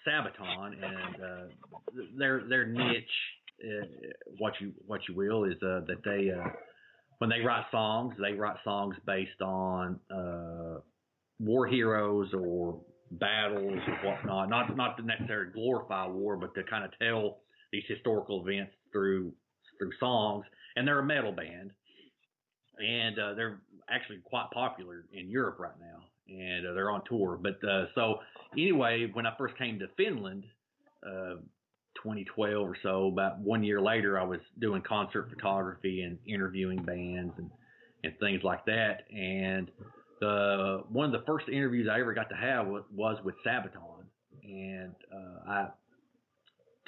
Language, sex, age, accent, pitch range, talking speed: English, male, 30-49, American, 95-115 Hz, 150 wpm